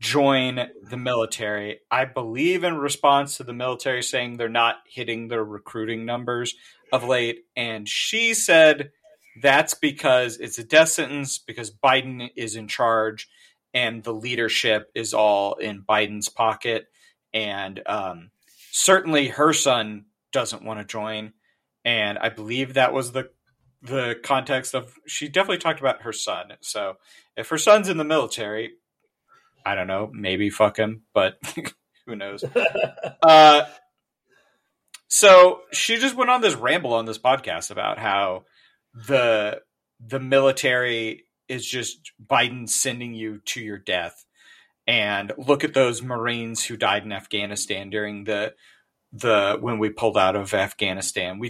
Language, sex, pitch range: English, male, 110-135 Hz